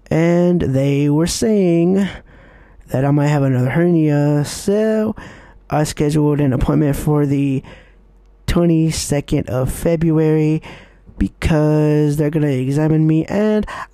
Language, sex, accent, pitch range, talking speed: English, male, American, 155-205 Hz, 115 wpm